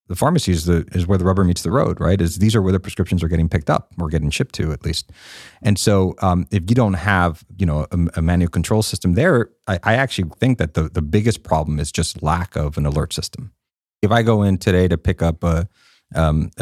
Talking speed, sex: 250 wpm, male